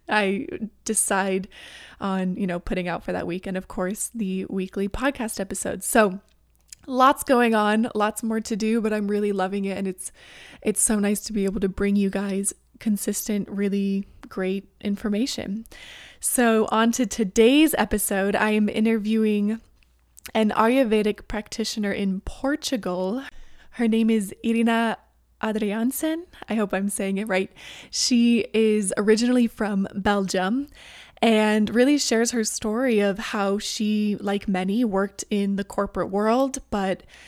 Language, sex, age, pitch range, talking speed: English, female, 20-39, 200-230 Hz, 145 wpm